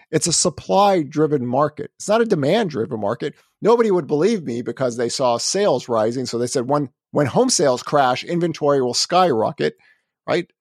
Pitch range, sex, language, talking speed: 120-160 Hz, male, English, 170 wpm